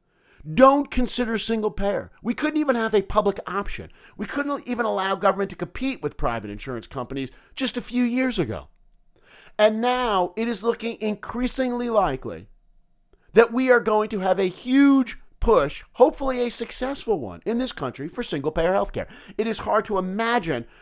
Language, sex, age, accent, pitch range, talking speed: English, male, 50-69, American, 140-225 Hz, 165 wpm